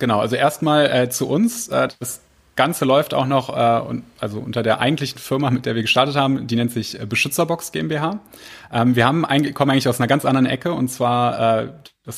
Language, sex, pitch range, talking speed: German, male, 115-135 Hz, 220 wpm